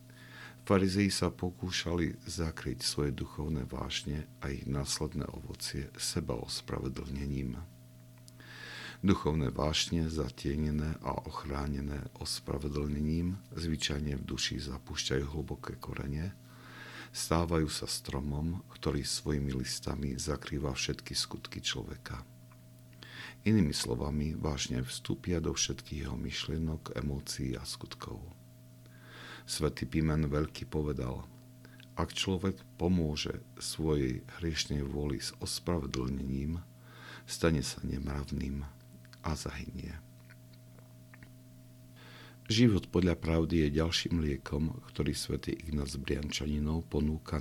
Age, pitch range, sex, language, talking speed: 50-69, 70-85 Hz, male, Slovak, 90 wpm